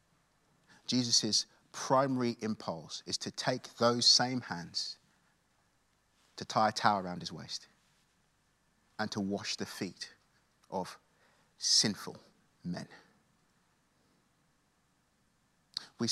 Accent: British